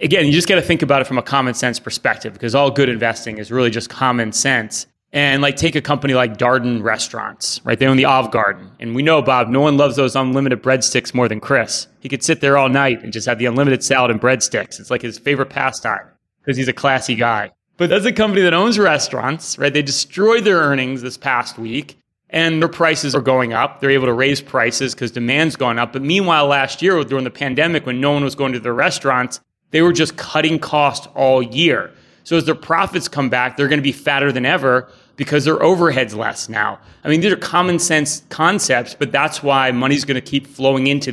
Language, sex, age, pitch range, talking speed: English, male, 30-49, 125-150 Hz, 230 wpm